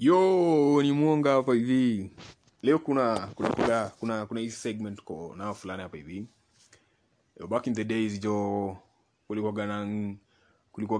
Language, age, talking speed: Swahili, 20-39, 140 wpm